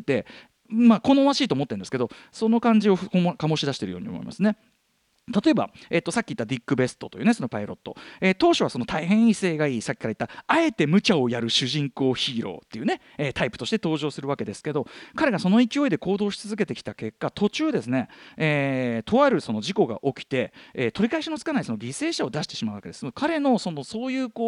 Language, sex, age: Japanese, male, 40-59